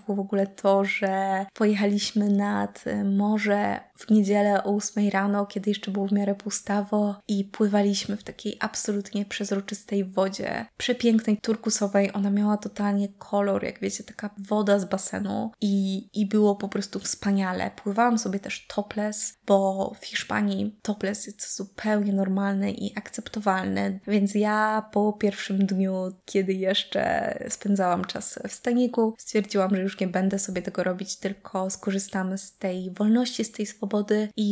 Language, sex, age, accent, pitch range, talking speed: Polish, female, 20-39, native, 195-215 Hz, 150 wpm